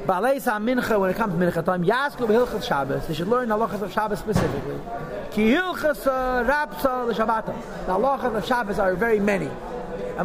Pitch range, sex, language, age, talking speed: 195-260 Hz, male, English, 30-49, 115 wpm